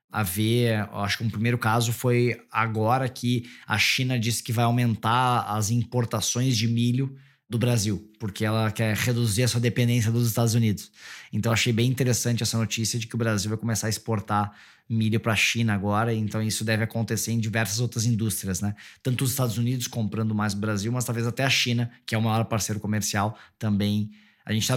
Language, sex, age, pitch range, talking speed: Portuguese, male, 20-39, 105-120 Hz, 205 wpm